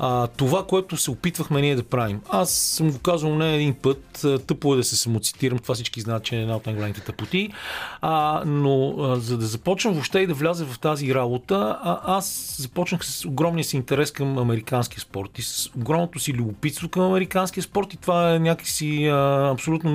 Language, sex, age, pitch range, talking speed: Bulgarian, male, 40-59, 120-155 Hz, 190 wpm